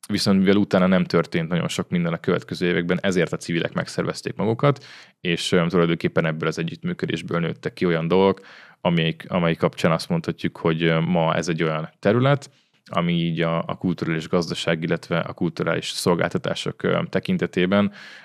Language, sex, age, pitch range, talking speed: Hungarian, male, 20-39, 85-115 Hz, 155 wpm